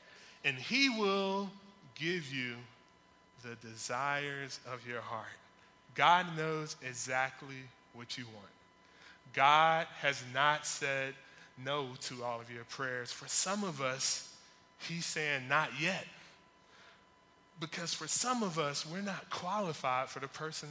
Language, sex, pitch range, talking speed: English, male, 130-165 Hz, 130 wpm